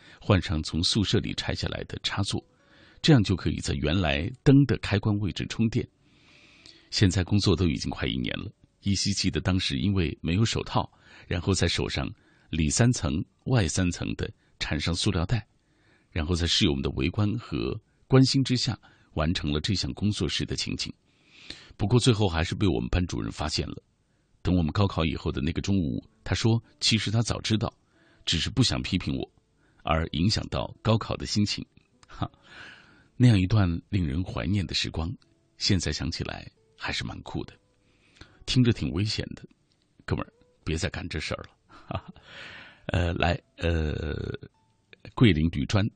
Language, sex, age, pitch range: Chinese, male, 50-69, 80-110 Hz